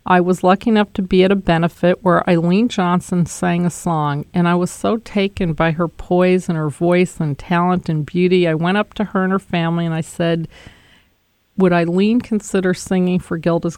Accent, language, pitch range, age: American, English, 165-185 Hz, 50-69